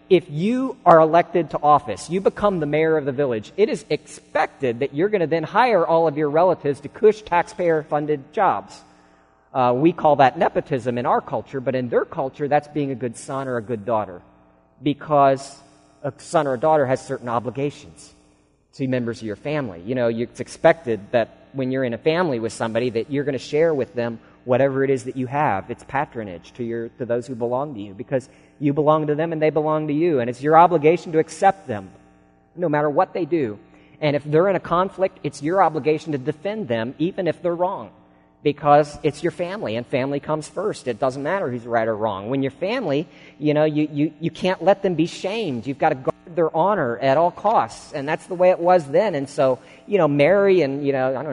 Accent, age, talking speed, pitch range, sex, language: American, 40-59, 225 wpm, 125-160 Hz, male, English